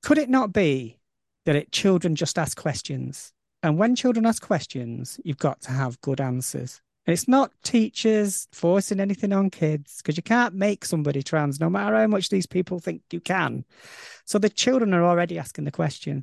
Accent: British